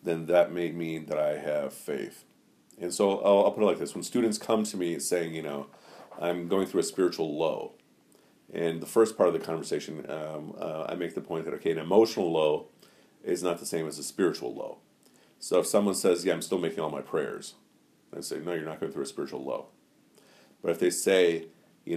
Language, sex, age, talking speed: English, male, 40-59, 225 wpm